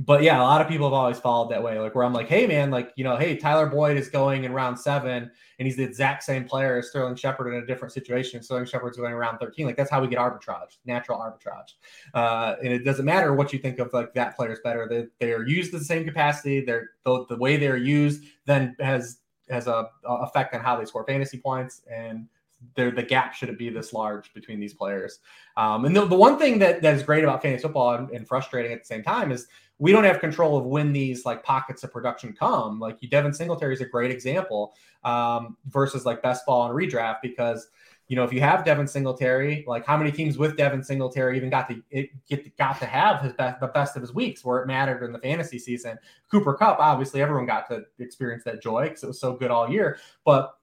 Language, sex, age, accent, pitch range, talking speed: English, male, 20-39, American, 120-145 Hz, 240 wpm